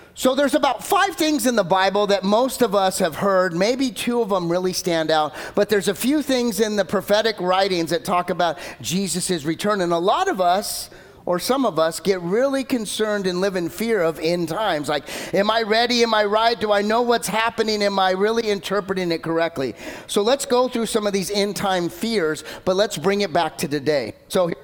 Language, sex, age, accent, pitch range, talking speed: English, male, 40-59, American, 160-210 Hz, 220 wpm